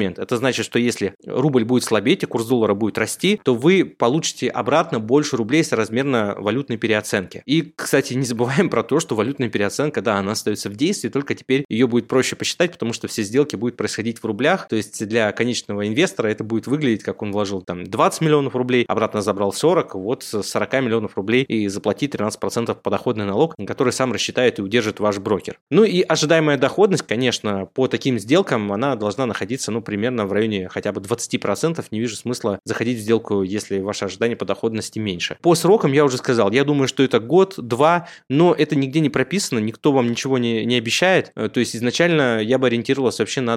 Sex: male